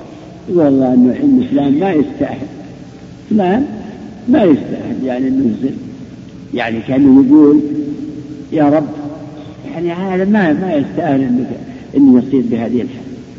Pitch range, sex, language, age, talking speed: 150-245 Hz, male, Arabic, 60-79, 115 wpm